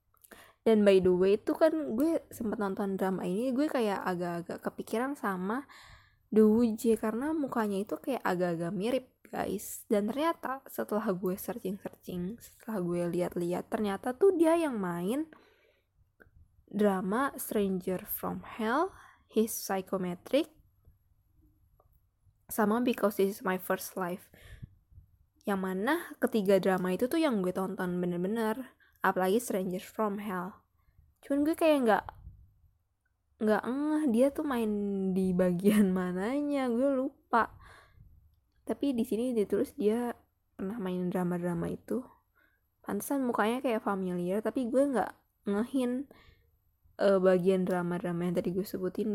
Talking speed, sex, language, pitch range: 125 wpm, female, Indonesian, 180-240 Hz